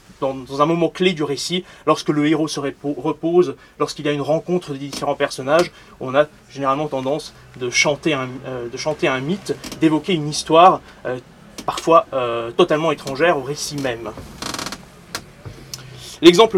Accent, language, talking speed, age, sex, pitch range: French, French, 155 wpm, 30-49, male, 145-180 Hz